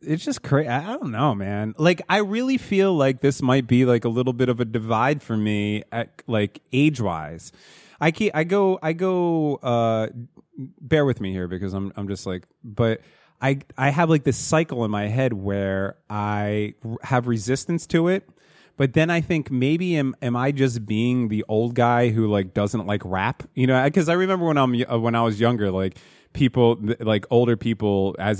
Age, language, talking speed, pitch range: 30-49, English, 205 wpm, 105-150 Hz